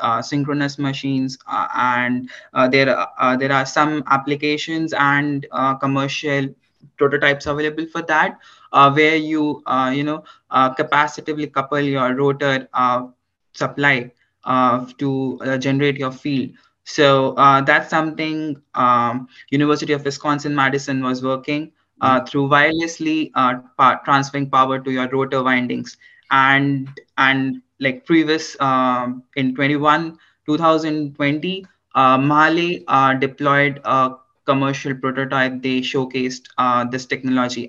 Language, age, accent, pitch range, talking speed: English, 20-39, Indian, 130-150 Hz, 125 wpm